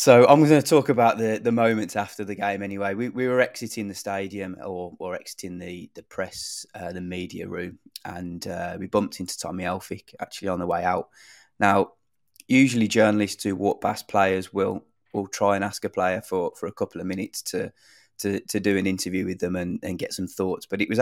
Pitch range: 90-110 Hz